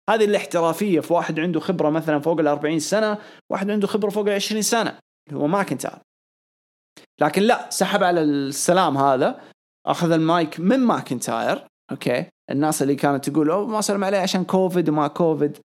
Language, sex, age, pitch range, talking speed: English, male, 20-39, 150-220 Hz, 150 wpm